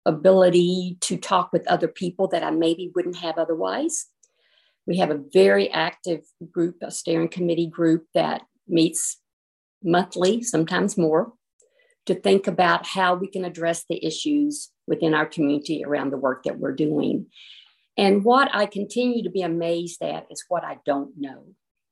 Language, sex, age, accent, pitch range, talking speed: English, female, 50-69, American, 165-200 Hz, 160 wpm